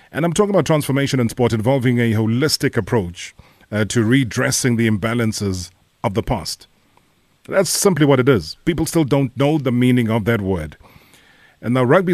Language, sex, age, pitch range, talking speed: English, male, 30-49, 110-140 Hz, 180 wpm